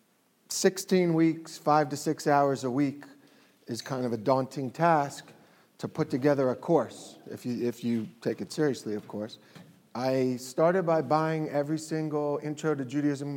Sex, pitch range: male, 135-165 Hz